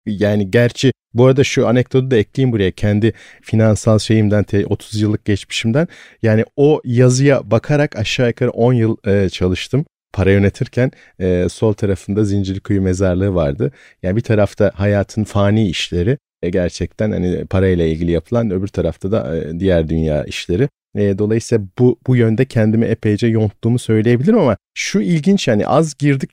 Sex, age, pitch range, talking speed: male, 40-59, 100-140 Hz, 145 wpm